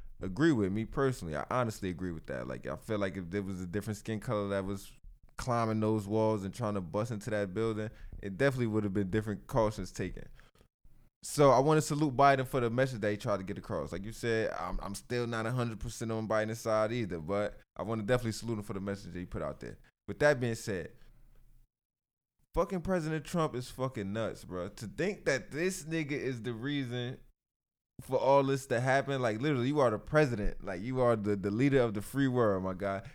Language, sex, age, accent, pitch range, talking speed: English, male, 20-39, American, 105-140 Hz, 225 wpm